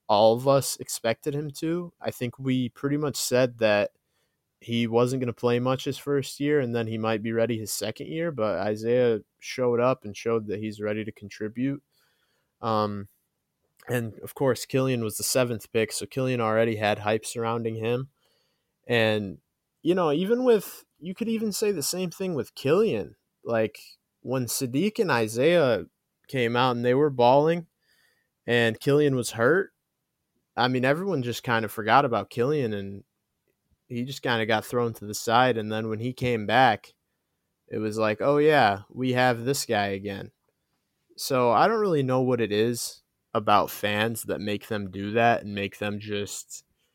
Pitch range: 105-125 Hz